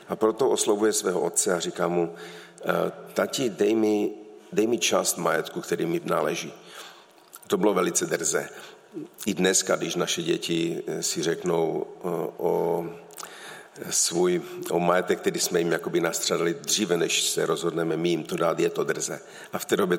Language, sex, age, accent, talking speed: Czech, male, 50-69, native, 160 wpm